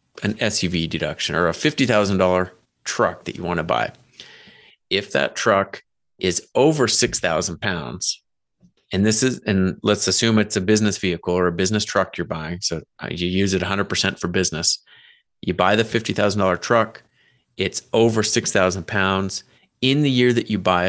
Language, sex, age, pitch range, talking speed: English, male, 30-49, 90-110 Hz, 165 wpm